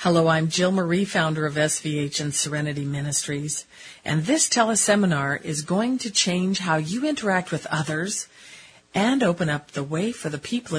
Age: 50-69